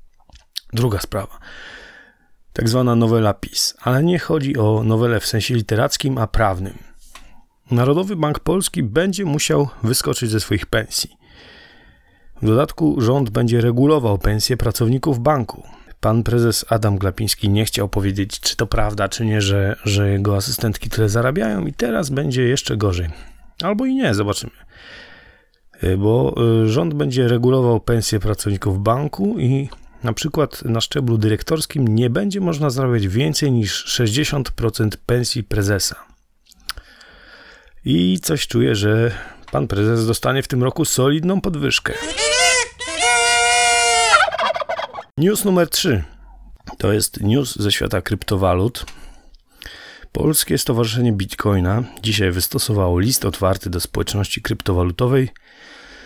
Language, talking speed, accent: Polish, 120 wpm, native